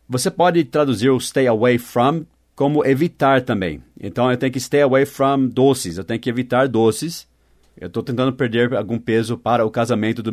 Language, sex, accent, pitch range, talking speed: English, male, Brazilian, 105-135 Hz, 190 wpm